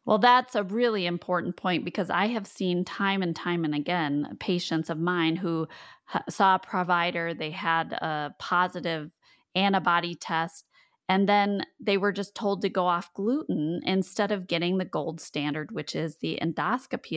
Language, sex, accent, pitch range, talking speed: English, female, American, 160-195 Hz, 170 wpm